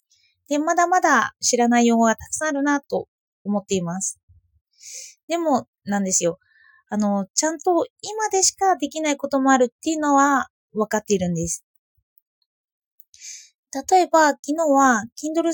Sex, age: female, 20-39